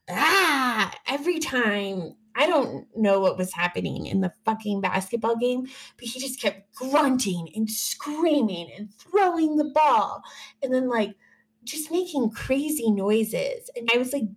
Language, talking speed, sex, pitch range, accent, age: English, 150 wpm, female, 195-270 Hz, American, 20-39